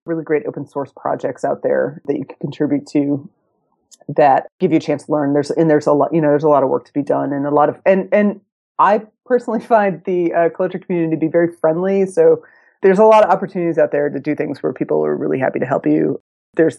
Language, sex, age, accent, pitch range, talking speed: English, female, 30-49, American, 150-215 Hz, 255 wpm